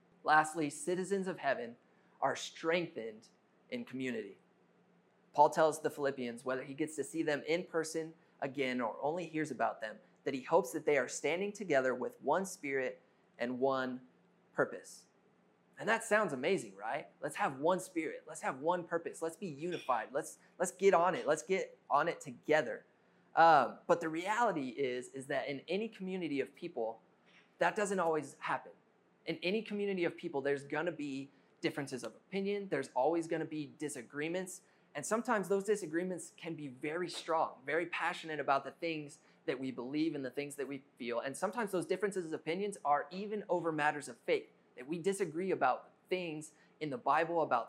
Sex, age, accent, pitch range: male, 20-39, American, 140-185 Hz